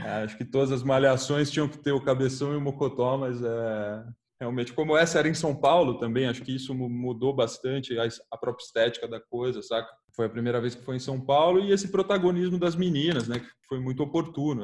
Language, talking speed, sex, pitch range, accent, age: Portuguese, 225 wpm, male, 120-150 Hz, Brazilian, 20-39